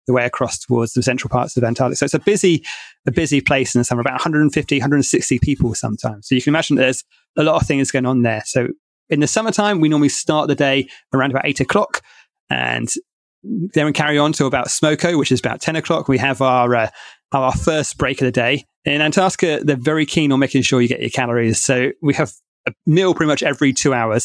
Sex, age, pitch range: male, 30-49, 130-155 Hz